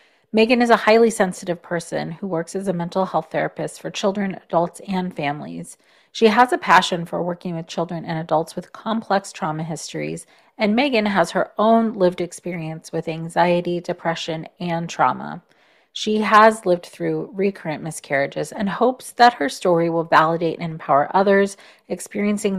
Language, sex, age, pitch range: English, female, 30-49, 170-205 Hz